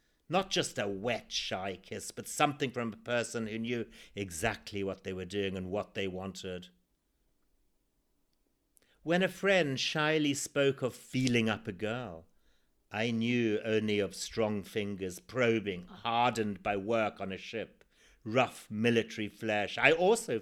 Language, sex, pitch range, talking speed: English, male, 105-160 Hz, 145 wpm